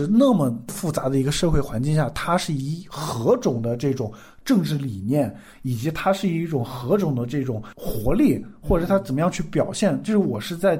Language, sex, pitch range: Chinese, male, 130-185 Hz